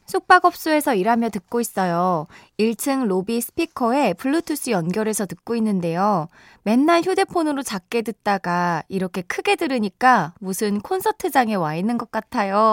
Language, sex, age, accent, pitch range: Korean, female, 20-39, native, 190-285 Hz